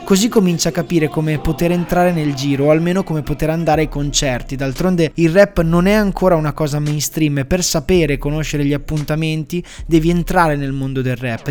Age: 20-39